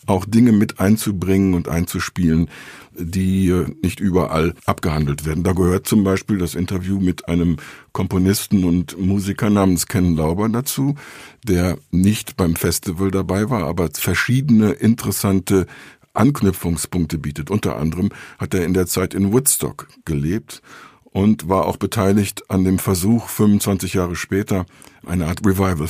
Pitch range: 85-105 Hz